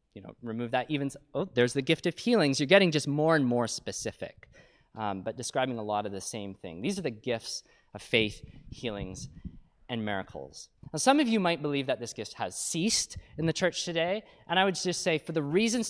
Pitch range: 120-165 Hz